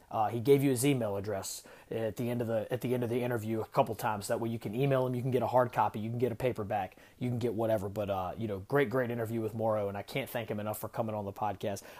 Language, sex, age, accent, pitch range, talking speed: English, male, 30-49, American, 110-135 Hz, 310 wpm